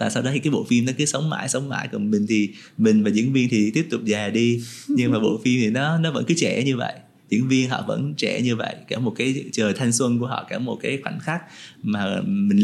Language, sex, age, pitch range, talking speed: Vietnamese, male, 20-39, 115-155 Hz, 280 wpm